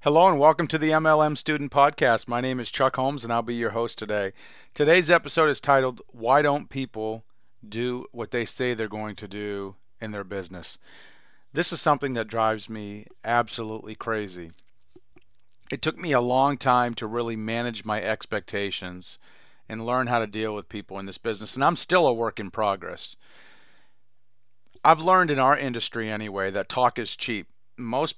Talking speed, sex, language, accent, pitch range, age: 180 wpm, male, English, American, 110-135 Hz, 40-59